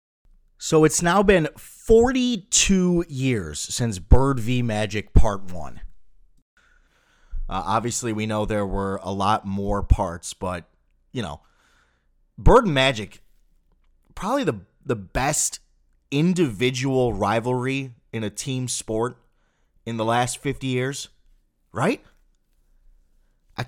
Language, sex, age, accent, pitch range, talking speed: English, male, 30-49, American, 100-130 Hz, 115 wpm